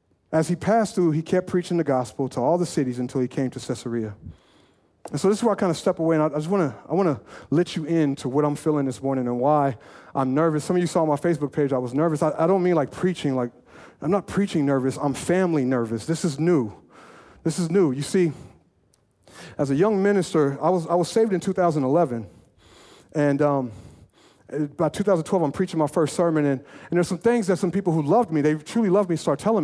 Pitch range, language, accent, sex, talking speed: 140-185 Hz, English, American, male, 235 wpm